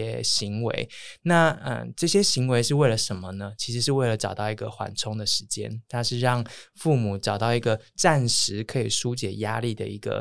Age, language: 20-39, Chinese